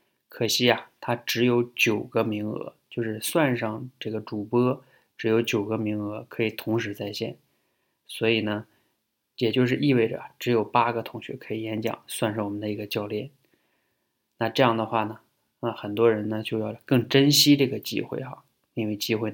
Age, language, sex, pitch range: 20-39, Chinese, male, 110-120 Hz